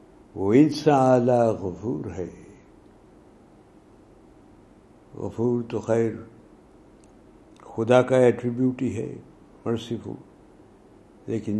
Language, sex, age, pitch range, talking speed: Urdu, male, 60-79, 100-130 Hz, 70 wpm